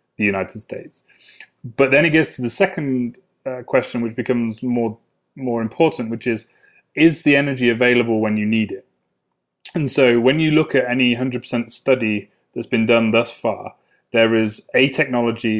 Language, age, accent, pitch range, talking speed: English, 30-49, British, 110-125 Hz, 170 wpm